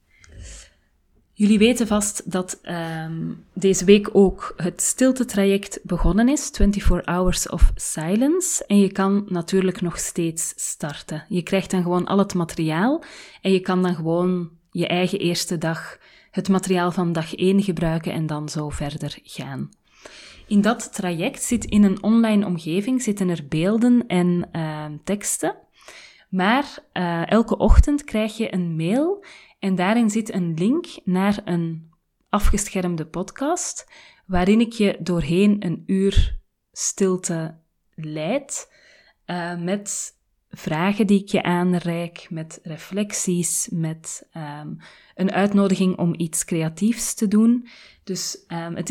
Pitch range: 170-205 Hz